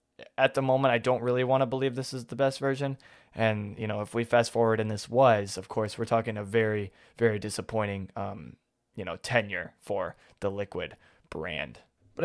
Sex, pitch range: male, 110-125 Hz